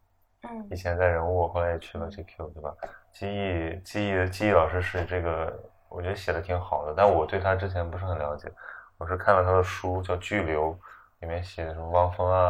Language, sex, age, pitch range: Chinese, male, 20-39, 85-95 Hz